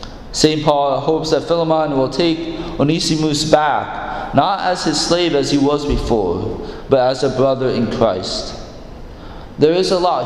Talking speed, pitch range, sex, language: 160 wpm, 130-160 Hz, male, English